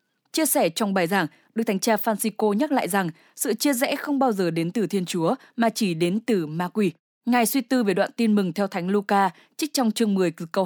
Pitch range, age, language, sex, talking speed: 185-235 Hz, 10-29, English, female, 250 wpm